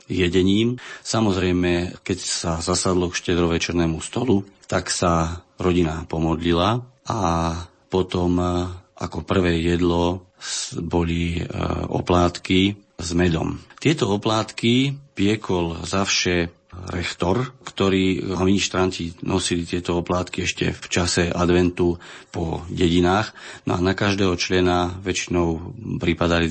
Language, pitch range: Slovak, 85-95 Hz